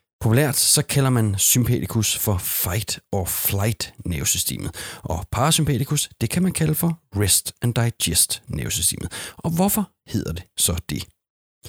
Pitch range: 95-130 Hz